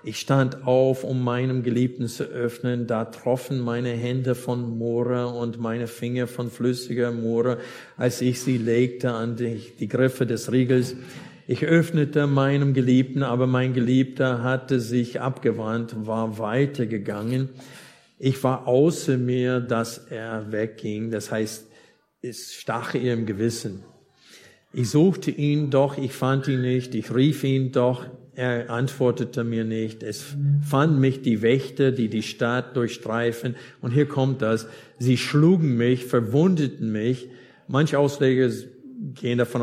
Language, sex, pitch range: German, male, 115-130 Hz